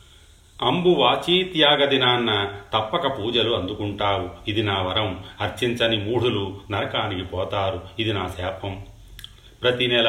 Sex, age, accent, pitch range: male, 40-59, native, 95-120 Hz